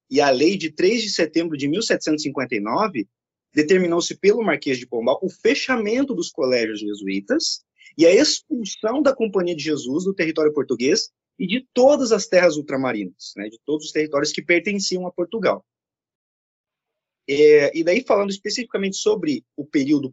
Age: 20-39